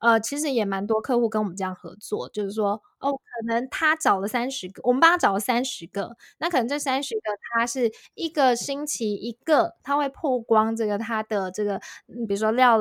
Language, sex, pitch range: Chinese, female, 210-265 Hz